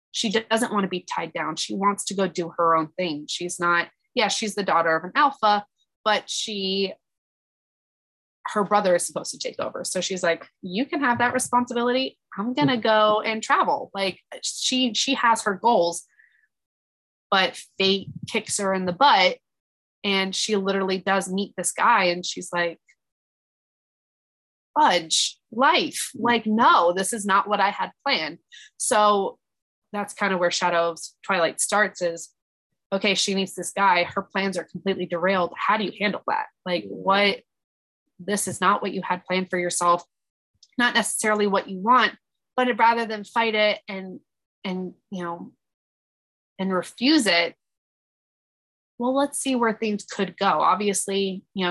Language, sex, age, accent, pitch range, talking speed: English, female, 20-39, American, 180-220 Hz, 165 wpm